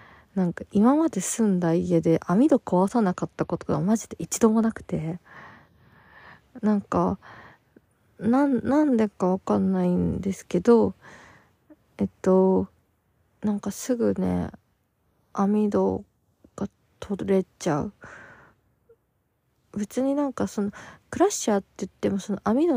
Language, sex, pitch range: Japanese, female, 170-240 Hz